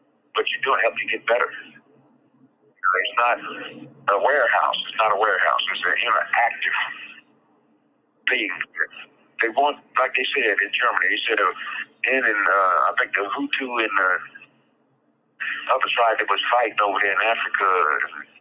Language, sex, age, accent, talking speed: English, male, 60-79, American, 160 wpm